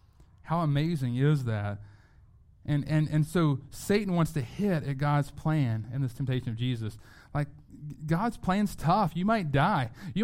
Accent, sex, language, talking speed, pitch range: American, male, English, 165 wpm, 115-155 Hz